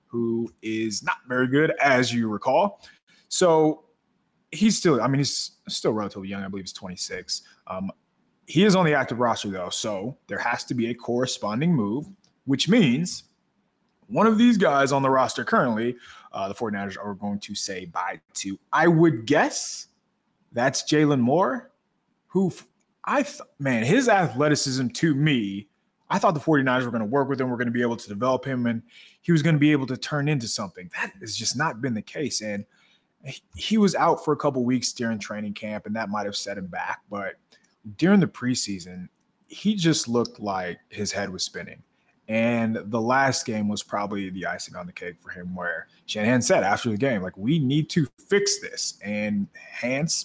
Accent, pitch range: American, 105-150 Hz